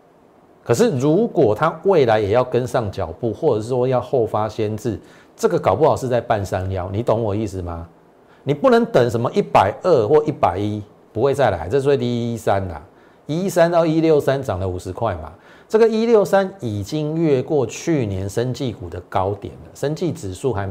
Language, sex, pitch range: Chinese, male, 100-160 Hz